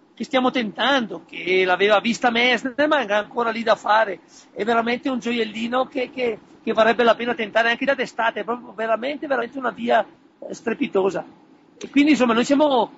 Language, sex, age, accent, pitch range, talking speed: Italian, male, 50-69, native, 215-275 Hz, 180 wpm